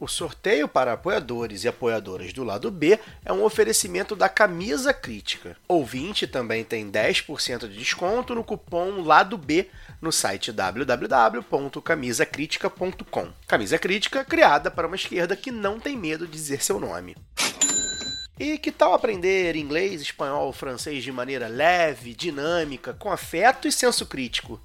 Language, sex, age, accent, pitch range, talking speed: Portuguese, male, 30-49, Brazilian, 125-195 Hz, 145 wpm